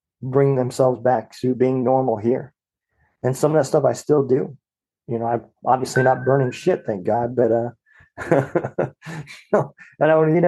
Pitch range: 125-140 Hz